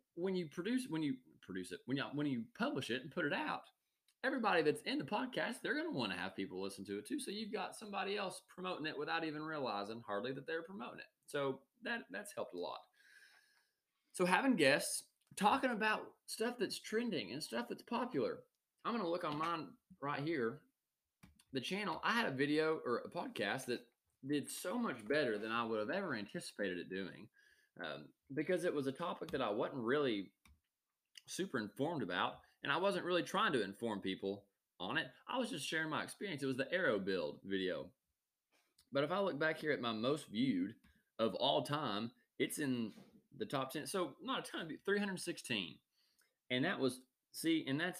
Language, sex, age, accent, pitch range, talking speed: English, male, 20-39, American, 125-190 Hz, 200 wpm